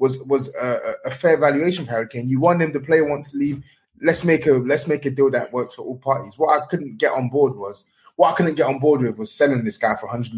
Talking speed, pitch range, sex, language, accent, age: 270 wpm, 130-175 Hz, male, English, British, 20-39